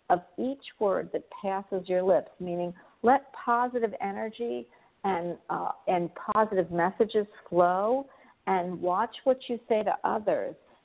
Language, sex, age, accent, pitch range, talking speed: English, female, 50-69, American, 165-210 Hz, 135 wpm